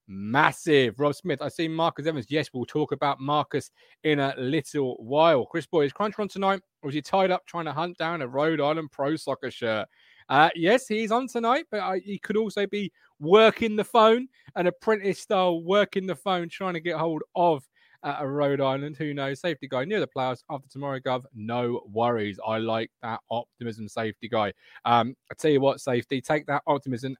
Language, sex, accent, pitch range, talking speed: English, male, British, 135-195 Hz, 205 wpm